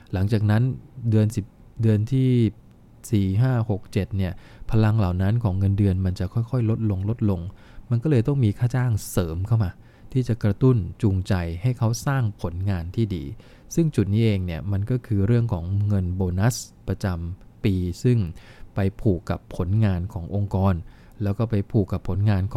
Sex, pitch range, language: male, 95-115 Hz, English